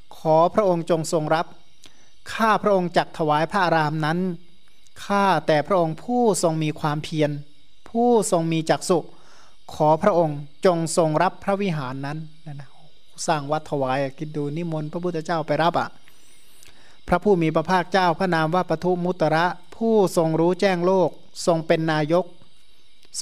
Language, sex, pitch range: Thai, male, 155-185 Hz